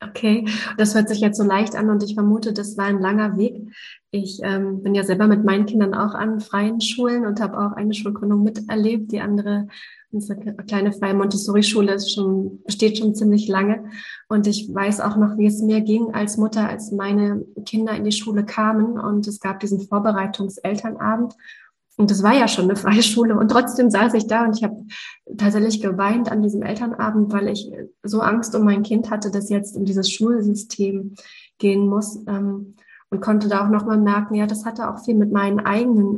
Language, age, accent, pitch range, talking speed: German, 20-39, German, 200-215 Hz, 195 wpm